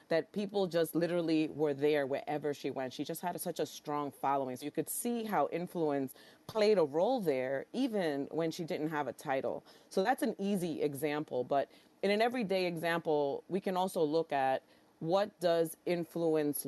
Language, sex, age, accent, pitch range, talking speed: English, female, 30-49, American, 150-195 Hz, 185 wpm